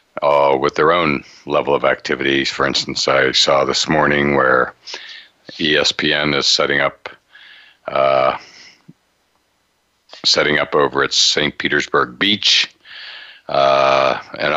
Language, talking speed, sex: English, 105 wpm, male